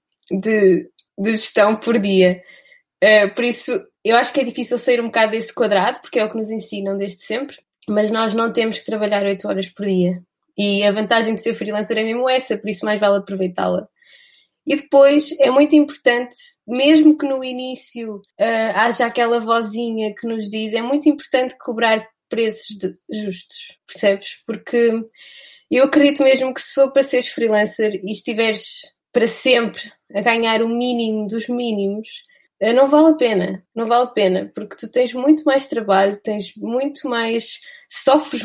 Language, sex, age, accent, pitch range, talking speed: Portuguese, female, 20-39, Brazilian, 210-255 Hz, 170 wpm